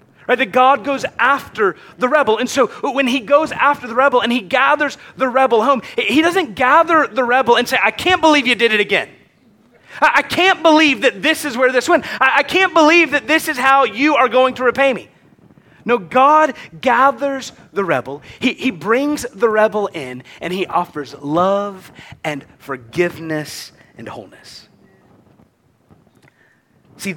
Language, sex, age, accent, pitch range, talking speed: English, male, 30-49, American, 170-270 Hz, 170 wpm